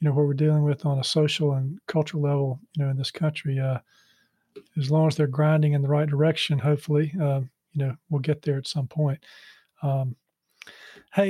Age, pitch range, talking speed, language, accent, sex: 40-59, 150-175 Hz, 205 wpm, English, American, male